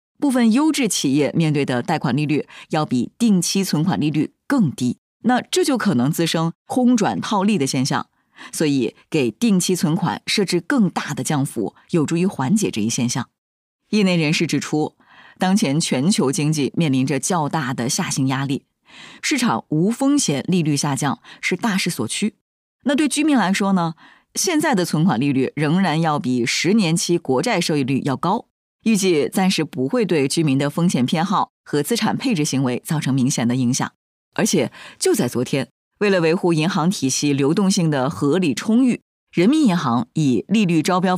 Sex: female